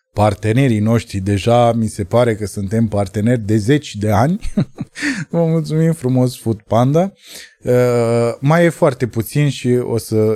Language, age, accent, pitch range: Romanian, 20-39, native, 110-155 Hz